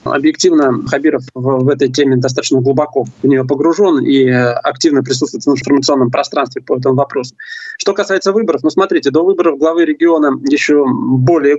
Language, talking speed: Russian, 160 wpm